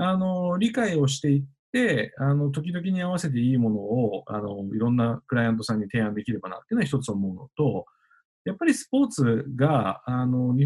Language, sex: Japanese, male